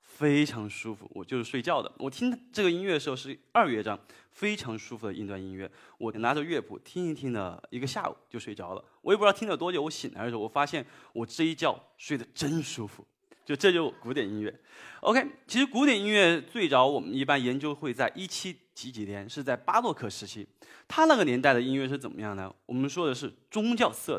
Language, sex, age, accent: Chinese, male, 20-39, native